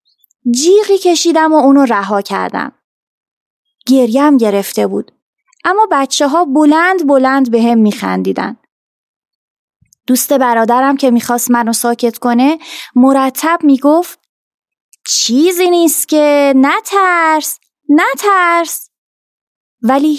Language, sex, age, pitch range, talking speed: Persian, female, 20-39, 235-310 Hz, 95 wpm